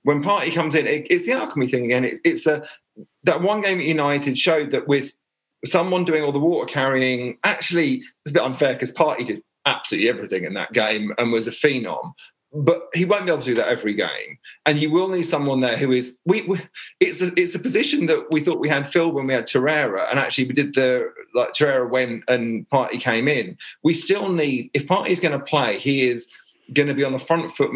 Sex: male